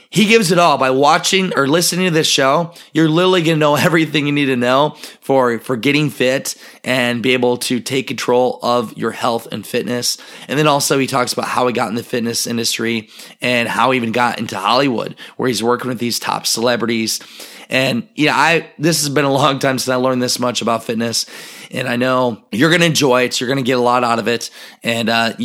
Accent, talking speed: American, 230 wpm